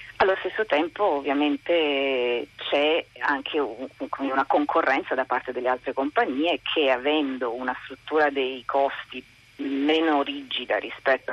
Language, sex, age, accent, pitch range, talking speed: Italian, female, 40-59, native, 140-185 Hz, 115 wpm